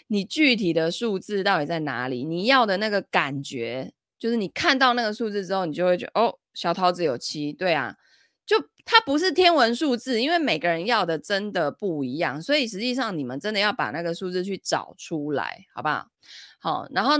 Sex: female